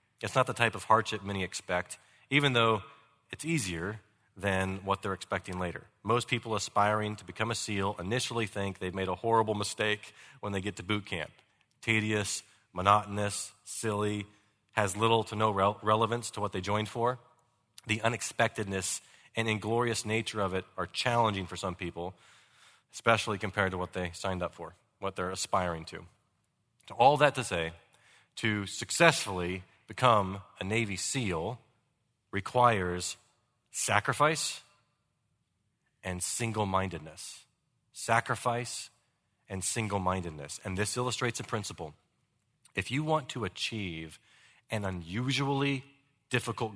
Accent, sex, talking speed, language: American, male, 135 wpm, English